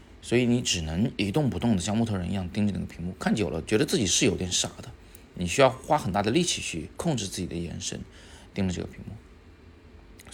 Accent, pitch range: native, 85-105 Hz